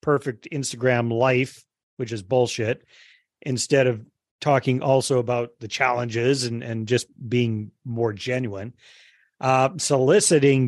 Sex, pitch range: male, 120-150 Hz